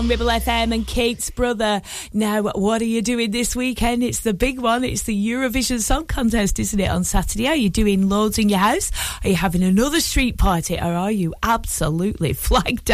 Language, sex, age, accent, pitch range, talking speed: English, female, 20-39, British, 175-235 Hz, 200 wpm